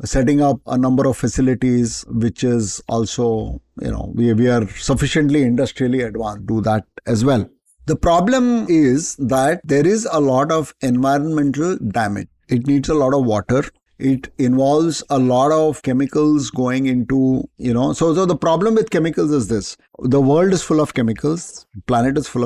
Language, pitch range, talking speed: English, 120-150 Hz, 175 wpm